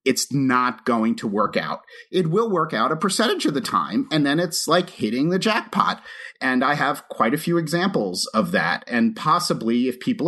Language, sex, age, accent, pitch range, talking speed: English, male, 30-49, American, 125-190 Hz, 205 wpm